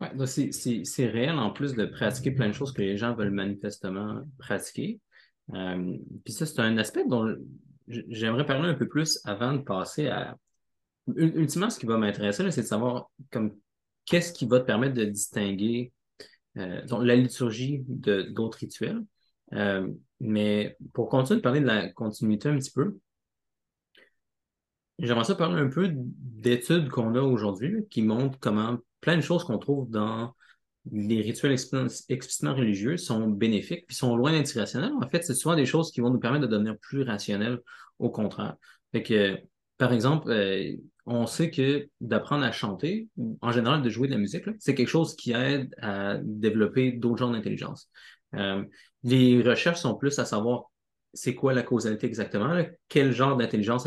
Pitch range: 110-140 Hz